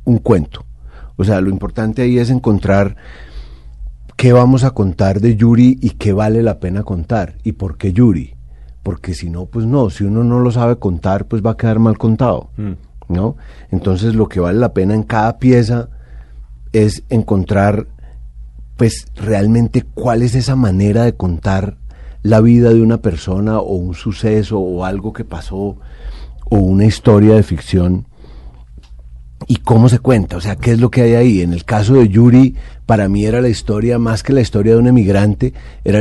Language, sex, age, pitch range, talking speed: Spanish, male, 40-59, 85-115 Hz, 180 wpm